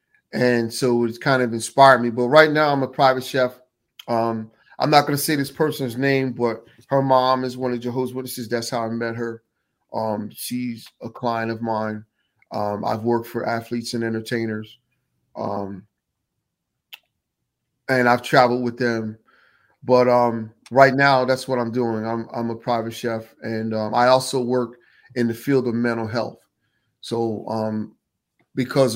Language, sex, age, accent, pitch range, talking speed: English, male, 30-49, American, 115-125 Hz, 170 wpm